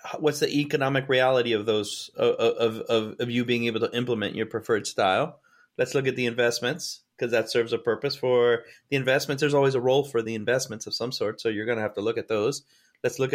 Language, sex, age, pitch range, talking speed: English, male, 30-49, 115-135 Hz, 230 wpm